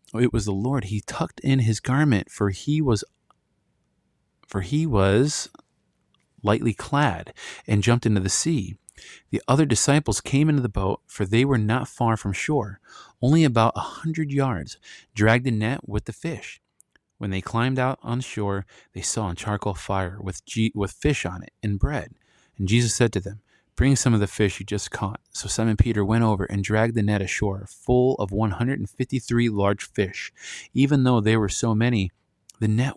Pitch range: 100-125 Hz